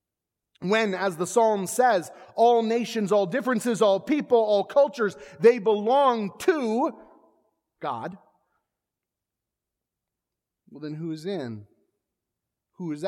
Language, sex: English, male